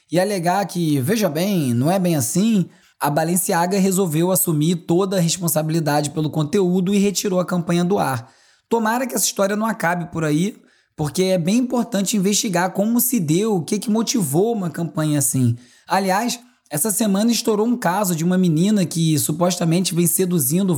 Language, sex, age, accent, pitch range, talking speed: Portuguese, male, 20-39, Brazilian, 160-200 Hz, 170 wpm